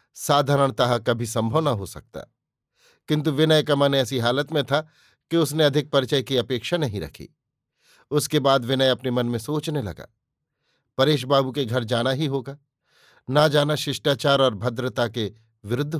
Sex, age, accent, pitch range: male, 50-69, native, 125-150 Hz